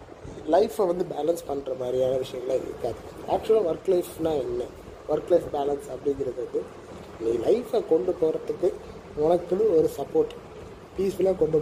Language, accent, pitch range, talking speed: Tamil, native, 145-185 Hz, 125 wpm